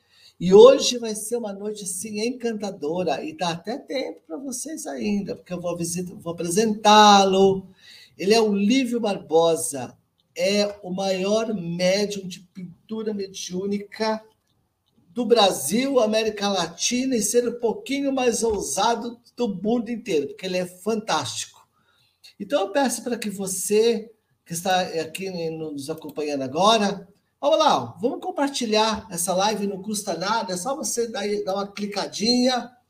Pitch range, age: 170-215 Hz, 50-69